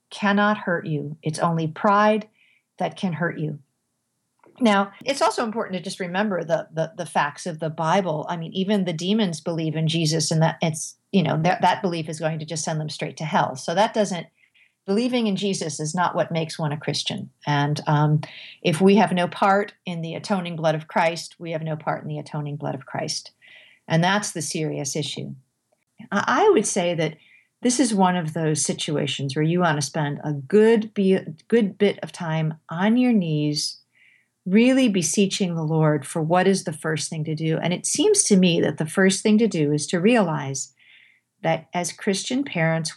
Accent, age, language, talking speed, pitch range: American, 50-69, English, 205 wpm, 155-200 Hz